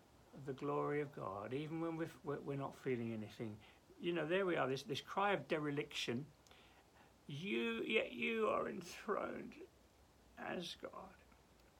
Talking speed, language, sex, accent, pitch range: 140 wpm, English, male, British, 130-210 Hz